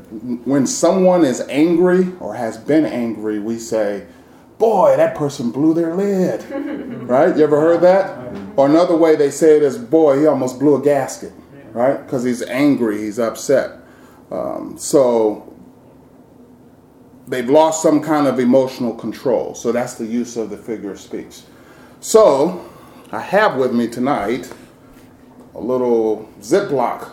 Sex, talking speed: male, 150 wpm